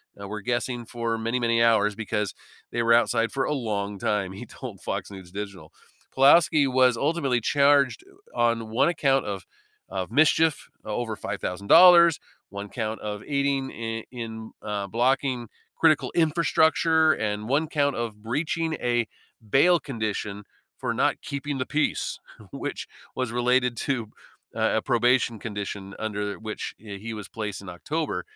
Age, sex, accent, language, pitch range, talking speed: 40-59, male, American, English, 105-145 Hz, 150 wpm